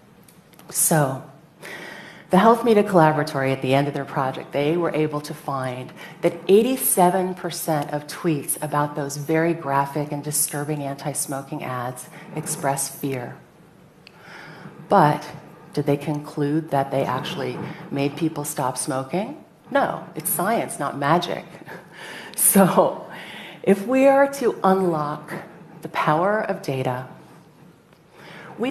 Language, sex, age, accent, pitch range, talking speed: English, female, 40-59, American, 145-180 Hz, 120 wpm